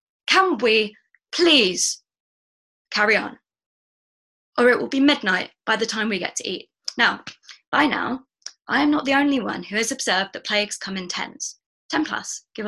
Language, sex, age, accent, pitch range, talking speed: English, female, 20-39, British, 205-290 Hz, 175 wpm